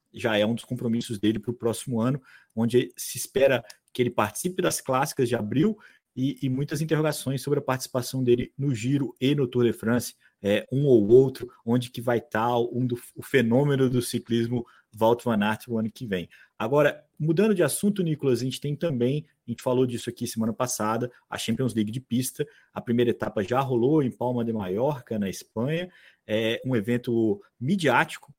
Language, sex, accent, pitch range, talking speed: Portuguese, male, Brazilian, 115-145 Hz, 190 wpm